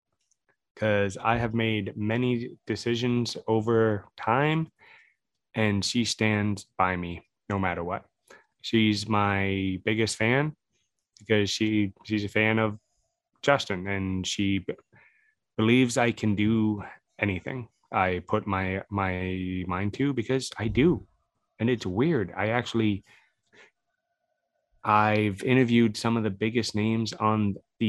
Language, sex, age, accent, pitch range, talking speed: English, male, 20-39, American, 105-120 Hz, 125 wpm